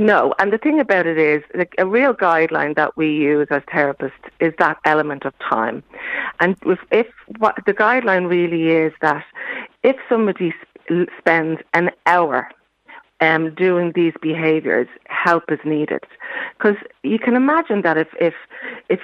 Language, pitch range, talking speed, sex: English, 160-190 Hz, 160 wpm, female